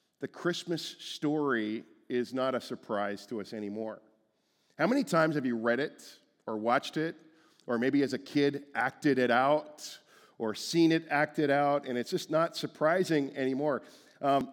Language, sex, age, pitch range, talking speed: English, male, 40-59, 125-160 Hz, 165 wpm